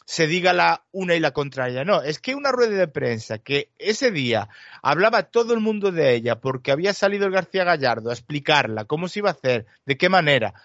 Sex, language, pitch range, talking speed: male, Spanish, 140-195 Hz, 220 wpm